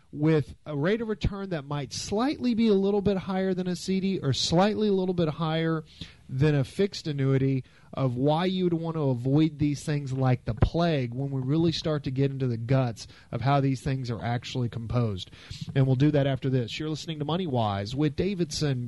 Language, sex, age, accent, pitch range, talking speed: English, male, 40-59, American, 130-155 Hz, 210 wpm